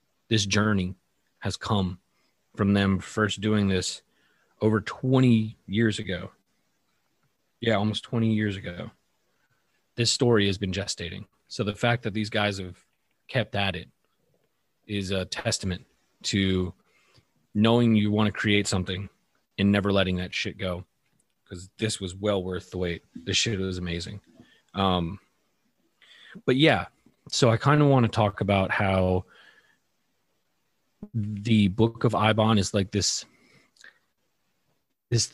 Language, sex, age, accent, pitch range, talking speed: English, male, 30-49, American, 95-115 Hz, 135 wpm